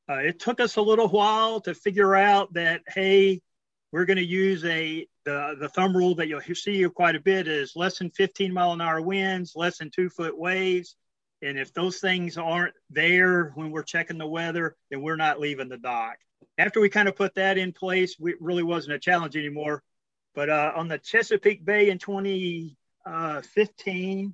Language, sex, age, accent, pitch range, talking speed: English, male, 40-59, American, 160-185 Hz, 195 wpm